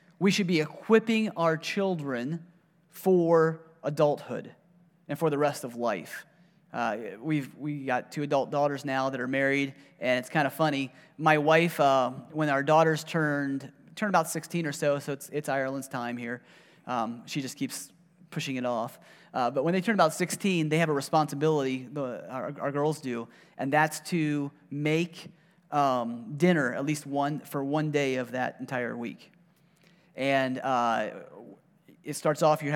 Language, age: English, 30-49